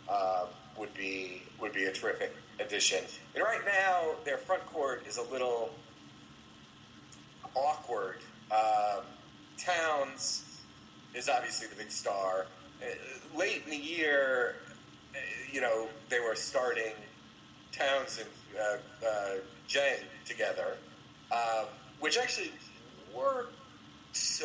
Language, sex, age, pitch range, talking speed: English, male, 30-49, 110-160 Hz, 110 wpm